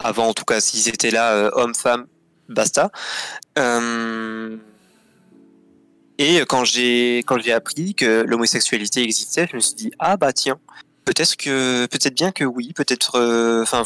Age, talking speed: 20-39, 160 wpm